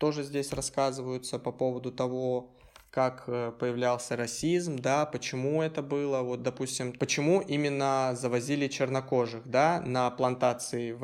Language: Russian